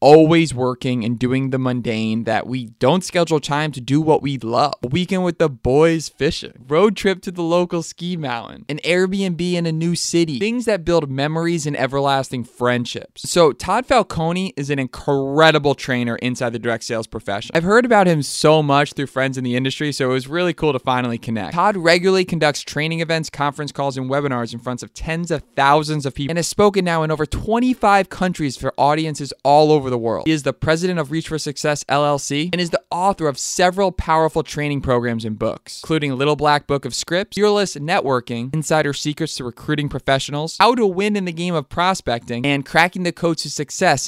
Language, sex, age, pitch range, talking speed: English, male, 20-39, 130-170 Hz, 205 wpm